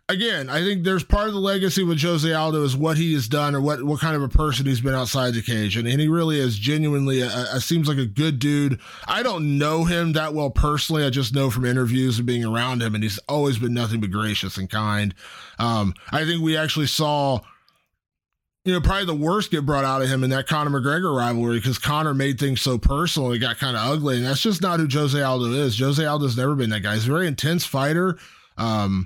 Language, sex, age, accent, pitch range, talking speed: English, male, 20-39, American, 120-150 Hz, 245 wpm